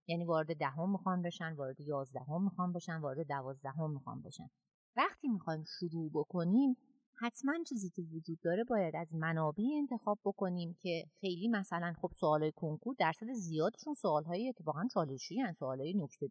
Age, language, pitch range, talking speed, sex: 30-49, Persian, 160-200 Hz, 155 wpm, female